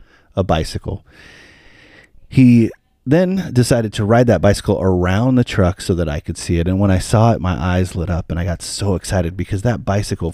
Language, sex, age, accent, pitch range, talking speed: English, male, 30-49, American, 85-100 Hz, 205 wpm